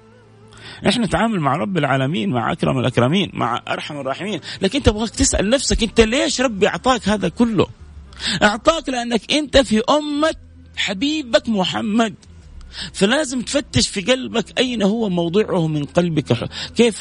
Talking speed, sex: 135 wpm, male